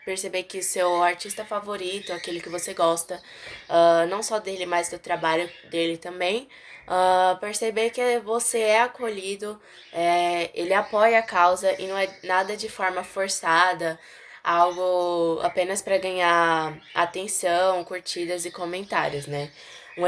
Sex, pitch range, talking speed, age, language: female, 175-205 Hz, 135 wpm, 10-29, Portuguese